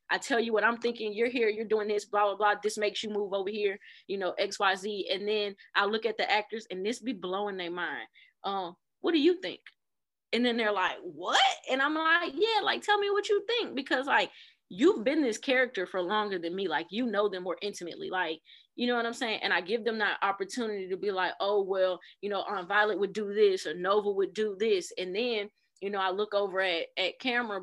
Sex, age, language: female, 20-39, English